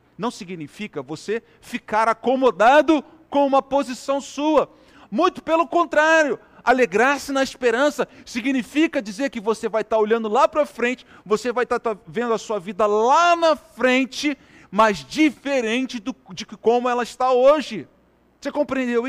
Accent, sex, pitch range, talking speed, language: Brazilian, male, 190-265 Hz, 140 wpm, Portuguese